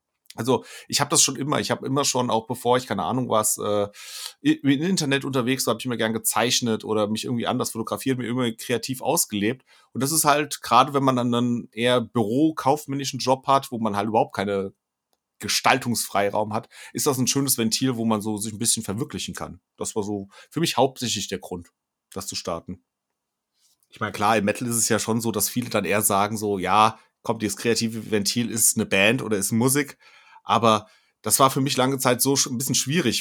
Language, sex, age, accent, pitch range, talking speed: German, male, 30-49, German, 105-125 Hz, 215 wpm